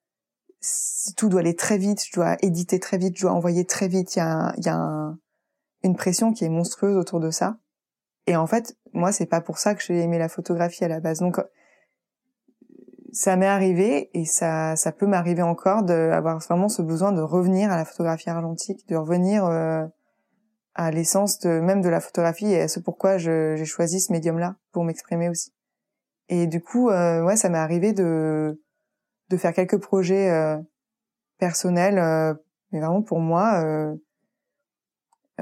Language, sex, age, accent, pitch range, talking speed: French, female, 20-39, French, 165-200 Hz, 185 wpm